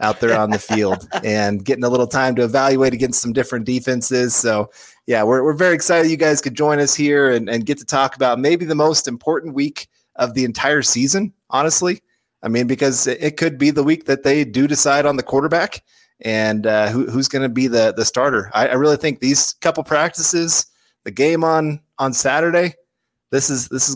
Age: 20-39